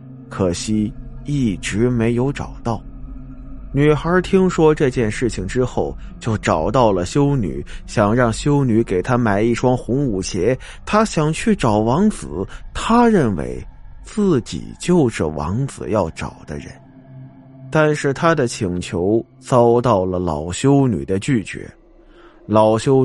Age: 20-39